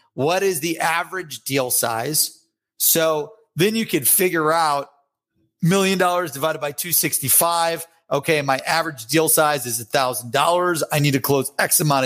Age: 30-49